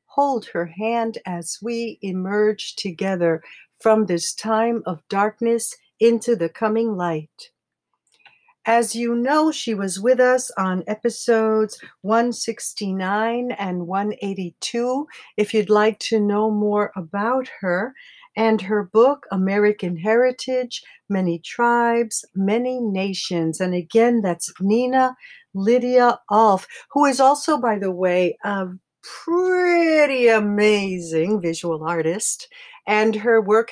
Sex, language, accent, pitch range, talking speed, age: female, English, American, 185-230 Hz, 115 wpm, 60-79